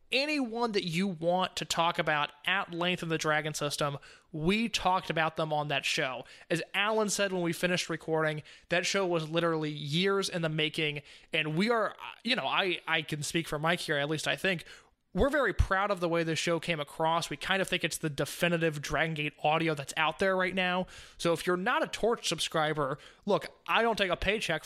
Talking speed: 215 wpm